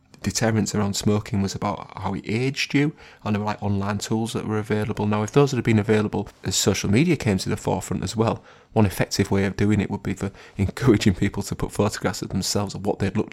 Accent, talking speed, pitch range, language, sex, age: British, 240 wpm, 95-105 Hz, English, male, 20-39